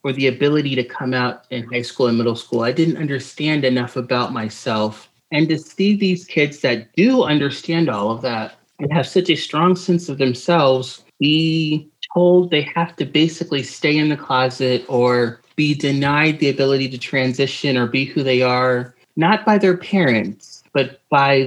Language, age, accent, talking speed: English, 30-49, American, 180 wpm